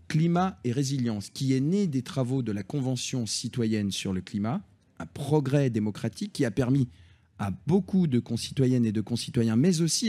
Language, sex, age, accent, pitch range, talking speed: French, male, 40-59, French, 110-150 Hz, 180 wpm